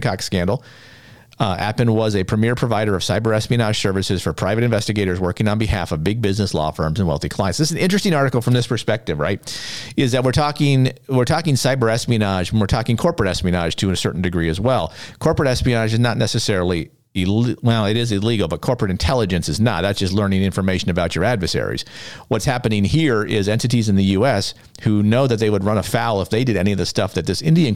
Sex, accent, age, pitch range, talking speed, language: male, American, 50-69, 100-125 Hz, 215 wpm, English